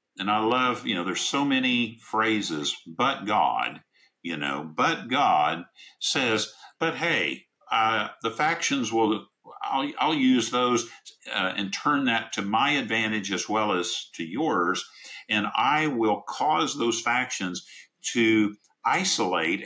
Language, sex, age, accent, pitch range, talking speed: English, male, 50-69, American, 95-130 Hz, 140 wpm